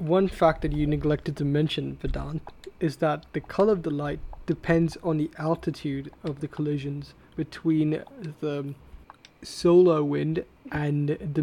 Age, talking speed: 20-39, 145 wpm